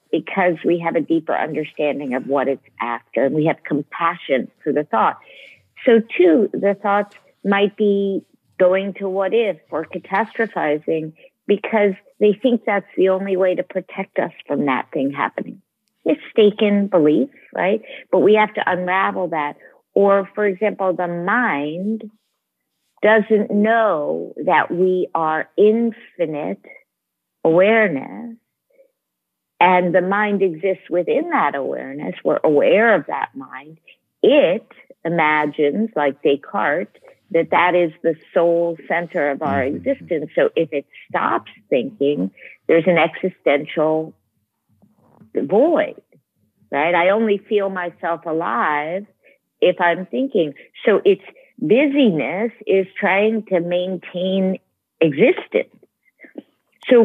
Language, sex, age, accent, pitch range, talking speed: English, female, 50-69, American, 165-215 Hz, 120 wpm